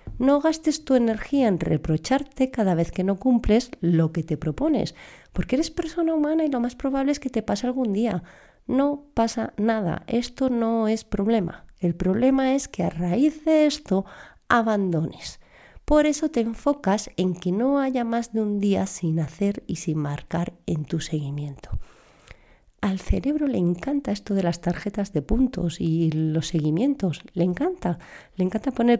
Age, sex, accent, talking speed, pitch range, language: 40-59, female, Spanish, 170 wpm, 175-265 Hz, Spanish